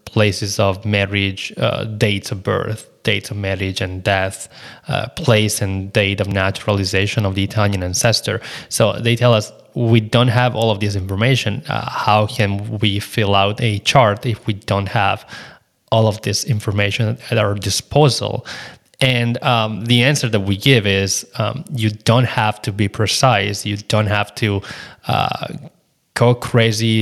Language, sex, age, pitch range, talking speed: English, male, 20-39, 105-120 Hz, 165 wpm